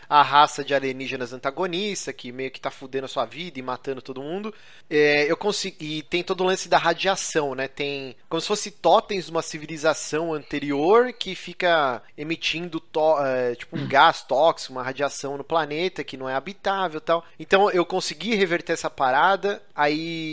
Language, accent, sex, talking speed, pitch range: Portuguese, Brazilian, male, 185 wpm, 145-185 Hz